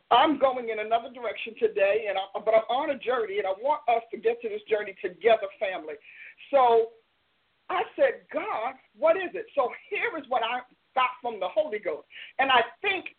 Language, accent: English, American